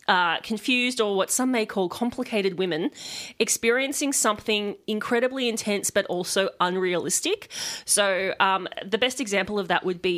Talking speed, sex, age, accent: 145 wpm, female, 20-39, Australian